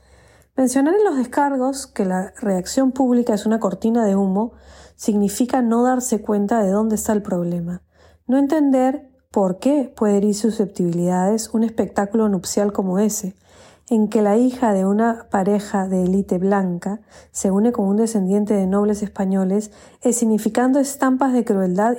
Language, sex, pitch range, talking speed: Spanish, female, 195-235 Hz, 155 wpm